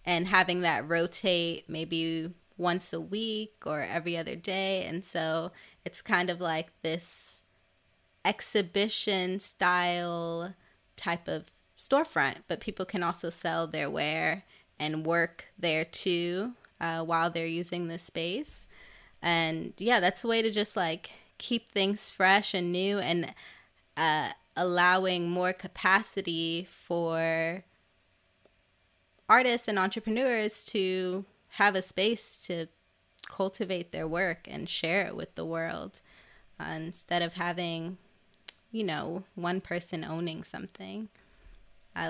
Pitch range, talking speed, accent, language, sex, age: 165-190 Hz, 125 wpm, American, English, female, 20-39